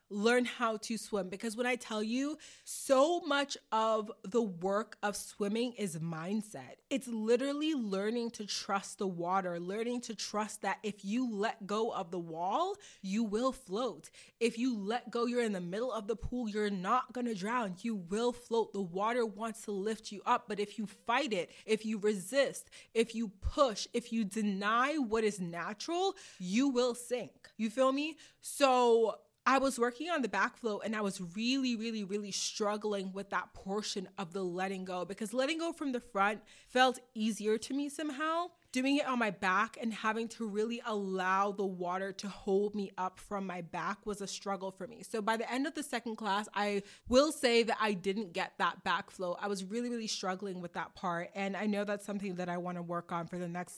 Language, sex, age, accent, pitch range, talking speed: English, female, 20-39, American, 200-245 Hz, 205 wpm